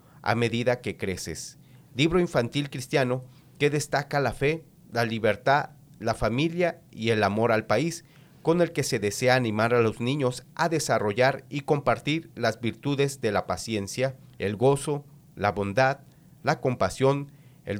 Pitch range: 115-150 Hz